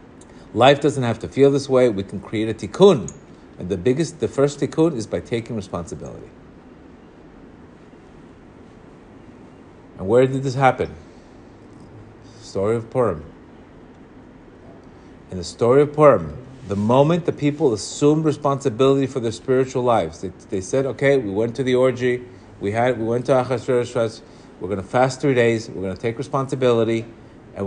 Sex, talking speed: male, 155 wpm